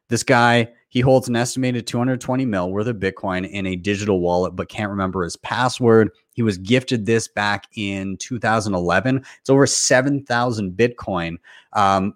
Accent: American